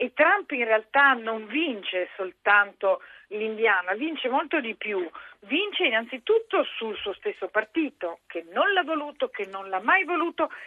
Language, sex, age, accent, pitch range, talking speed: Italian, female, 50-69, native, 215-335 Hz, 150 wpm